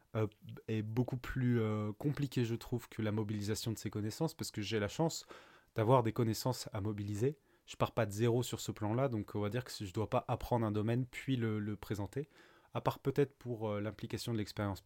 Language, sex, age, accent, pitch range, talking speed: French, male, 20-39, French, 105-125 Hz, 220 wpm